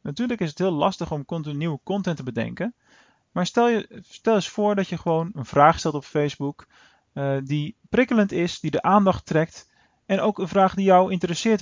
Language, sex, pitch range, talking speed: Dutch, male, 130-175 Hz, 205 wpm